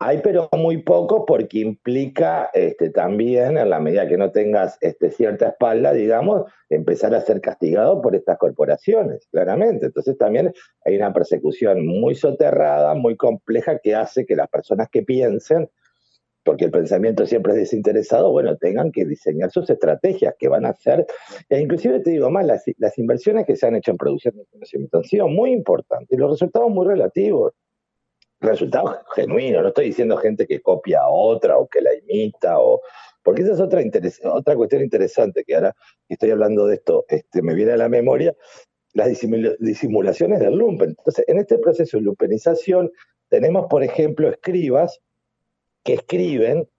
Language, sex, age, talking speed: English, male, 50-69, 170 wpm